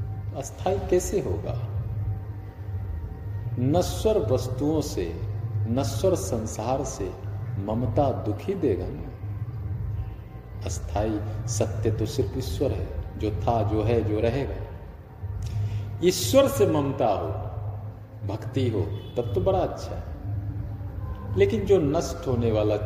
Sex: male